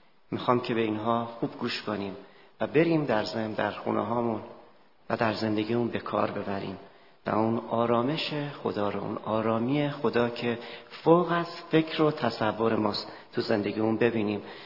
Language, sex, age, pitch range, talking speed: Persian, male, 40-59, 110-145 Hz, 150 wpm